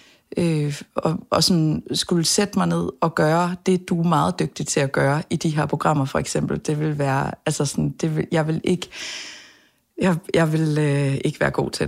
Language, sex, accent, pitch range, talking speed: Danish, female, native, 155-195 Hz, 210 wpm